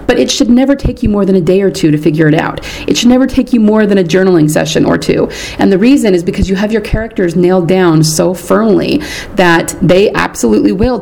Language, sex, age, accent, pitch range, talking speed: English, female, 30-49, American, 165-205 Hz, 245 wpm